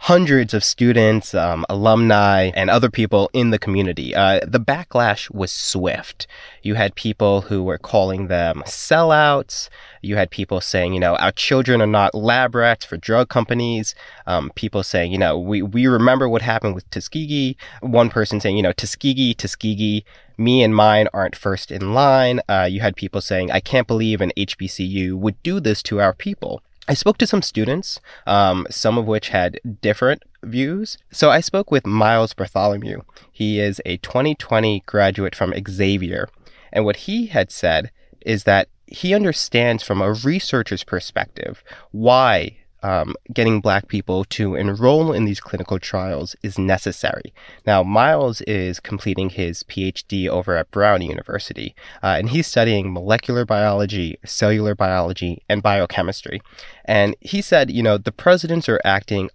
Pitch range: 100-120 Hz